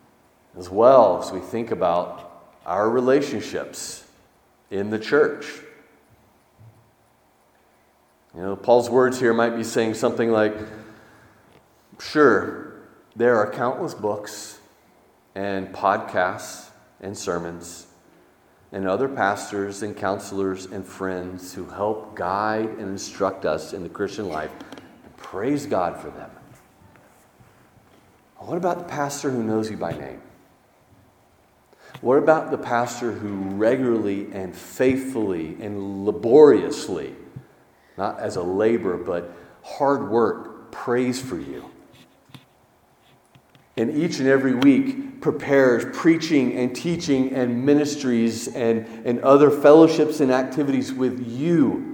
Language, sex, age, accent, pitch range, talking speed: English, male, 40-59, American, 100-135 Hz, 115 wpm